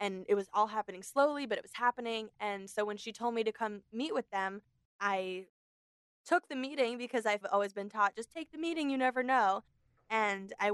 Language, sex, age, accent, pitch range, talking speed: English, female, 10-29, American, 200-235 Hz, 220 wpm